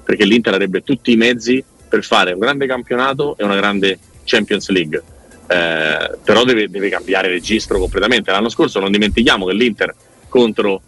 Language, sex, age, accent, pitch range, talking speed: Italian, male, 30-49, native, 95-115 Hz, 165 wpm